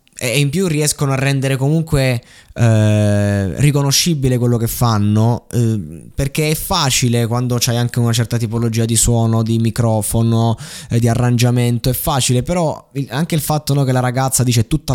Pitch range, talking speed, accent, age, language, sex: 105-130 Hz, 170 wpm, native, 20-39, Italian, male